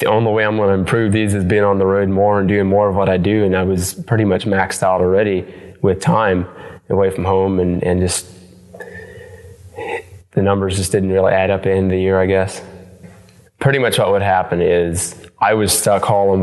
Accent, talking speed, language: American, 225 wpm, English